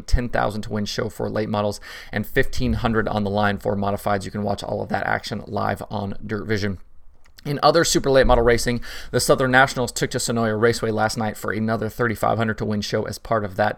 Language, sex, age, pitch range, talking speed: English, male, 20-39, 105-115 Hz, 220 wpm